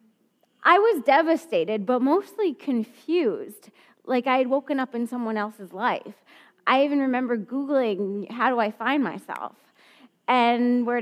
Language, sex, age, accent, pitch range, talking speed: English, female, 20-39, American, 230-315 Hz, 140 wpm